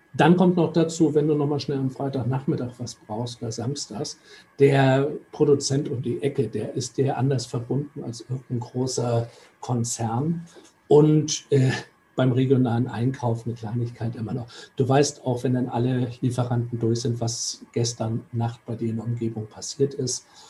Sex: male